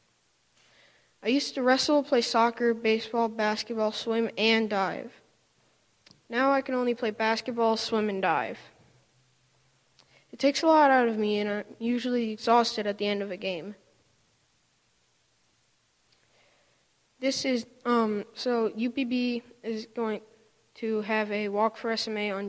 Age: 20-39